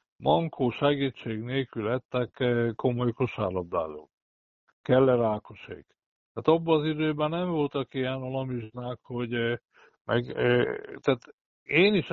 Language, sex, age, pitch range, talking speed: Hungarian, male, 60-79, 120-145 Hz, 105 wpm